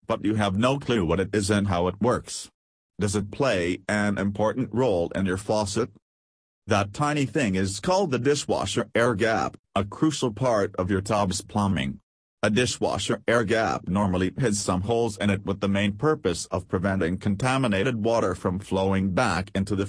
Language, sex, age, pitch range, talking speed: English, male, 40-59, 95-115 Hz, 180 wpm